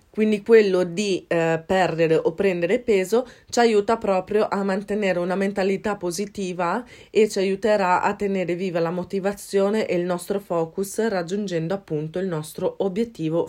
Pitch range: 160-190 Hz